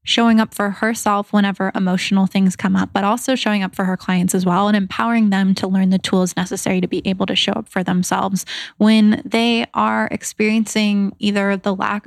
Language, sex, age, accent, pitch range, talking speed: English, female, 20-39, American, 195-220 Hz, 205 wpm